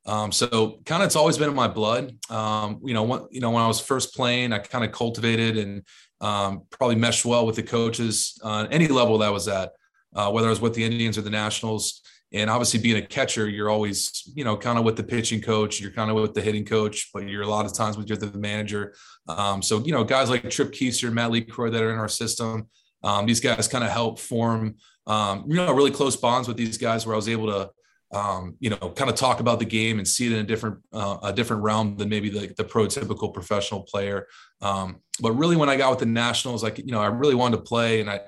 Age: 20-39